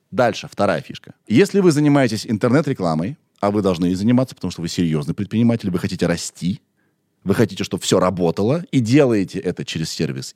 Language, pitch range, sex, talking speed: Russian, 95-160 Hz, male, 175 wpm